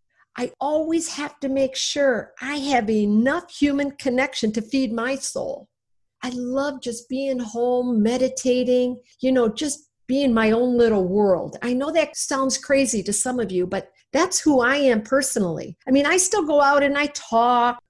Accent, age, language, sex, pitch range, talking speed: American, 50-69, English, female, 205-275 Hz, 180 wpm